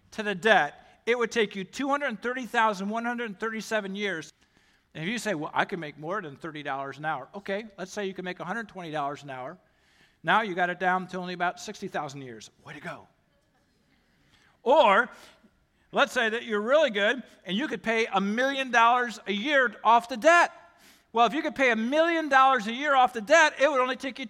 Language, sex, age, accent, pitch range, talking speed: English, male, 50-69, American, 225-325 Hz, 200 wpm